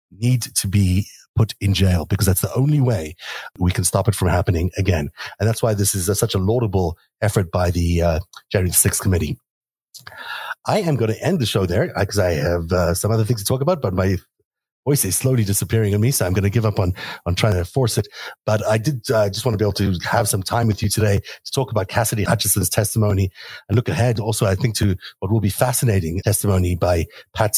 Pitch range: 95-120 Hz